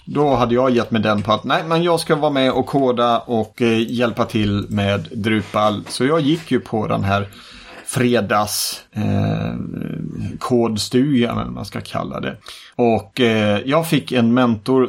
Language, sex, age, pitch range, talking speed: Swedish, male, 30-49, 110-135 Hz, 175 wpm